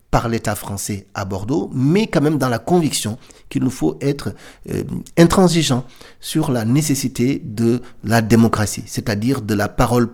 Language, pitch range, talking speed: French, 105-125 Hz, 160 wpm